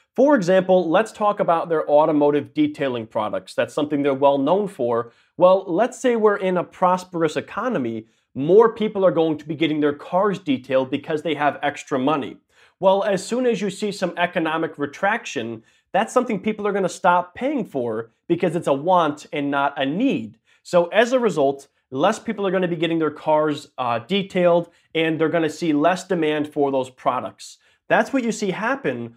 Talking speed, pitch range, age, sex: 185 wpm, 145-195 Hz, 30-49, male